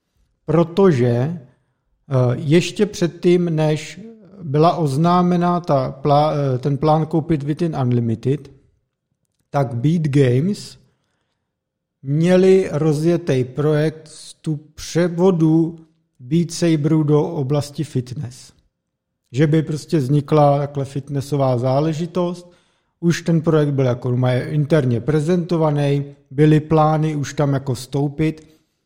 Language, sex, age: Czech, male, 50-69